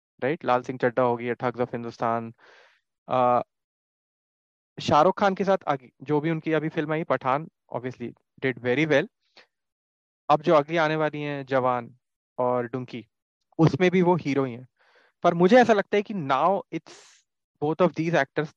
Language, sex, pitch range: Hindi, male, 125-160 Hz